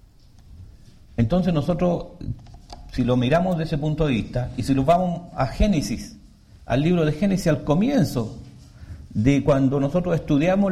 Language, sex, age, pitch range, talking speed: English, male, 50-69, 120-175 Hz, 145 wpm